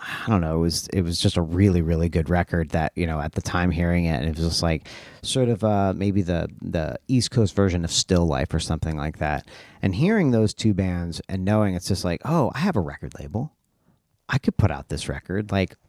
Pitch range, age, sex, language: 85-110 Hz, 40-59, male, English